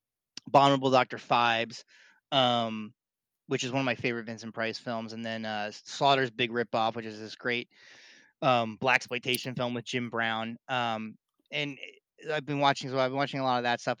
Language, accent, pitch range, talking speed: English, American, 120-135 Hz, 190 wpm